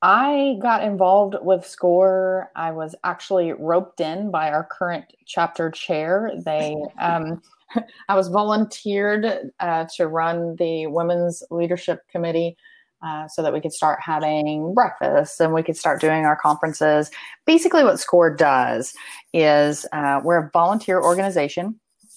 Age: 30-49